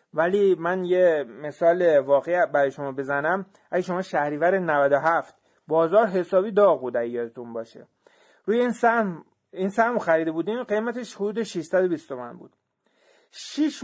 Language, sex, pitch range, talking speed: Persian, male, 150-215 Hz, 135 wpm